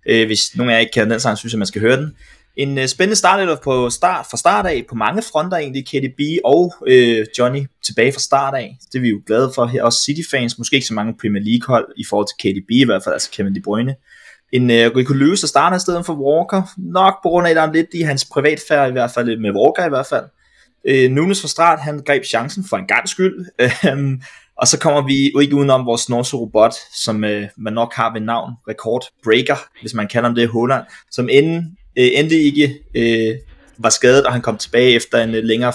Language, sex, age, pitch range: Danish, male, 20-39, 115-145 Hz